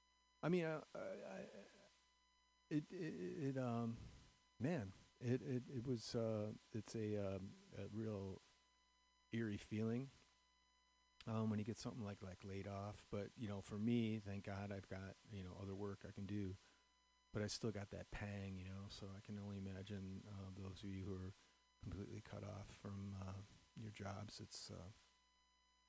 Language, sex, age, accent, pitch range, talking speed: English, male, 40-59, American, 90-110 Hz, 175 wpm